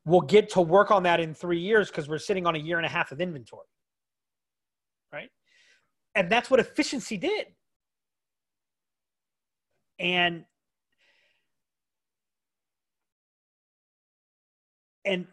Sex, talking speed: male, 110 wpm